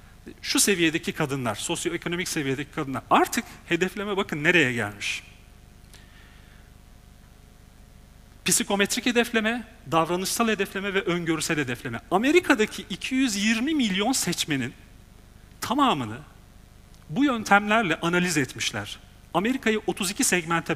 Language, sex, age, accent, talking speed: Turkish, male, 40-59, native, 85 wpm